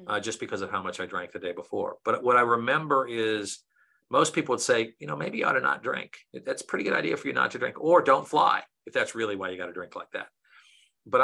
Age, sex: 50-69, male